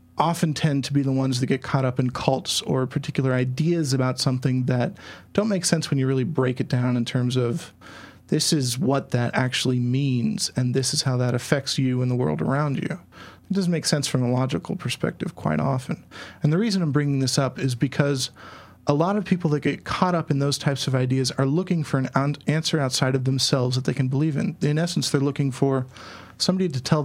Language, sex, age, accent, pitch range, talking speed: English, male, 40-59, American, 130-155 Hz, 225 wpm